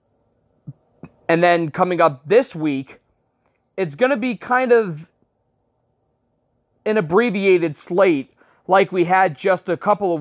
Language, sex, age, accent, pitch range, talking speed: English, male, 30-49, American, 145-200 Hz, 130 wpm